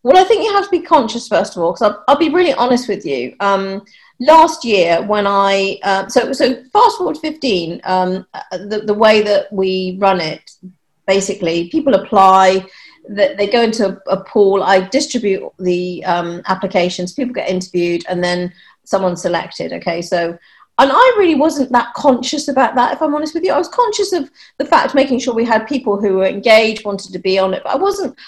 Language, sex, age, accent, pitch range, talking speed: English, female, 40-59, British, 190-270 Hz, 210 wpm